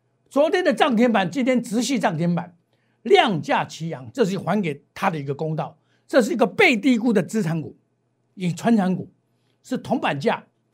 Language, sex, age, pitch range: Chinese, male, 50-69, 150-240 Hz